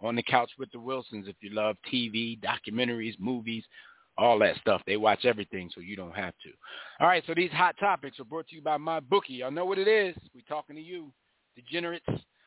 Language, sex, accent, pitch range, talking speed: English, male, American, 110-160 Hz, 220 wpm